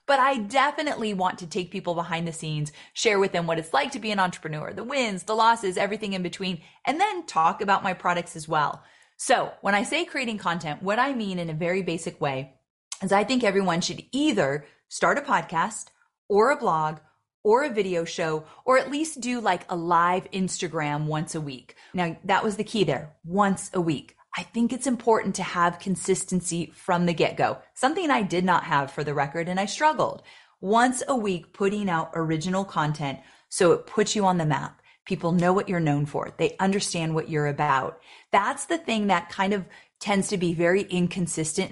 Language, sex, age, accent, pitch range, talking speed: English, female, 30-49, American, 165-220 Hz, 205 wpm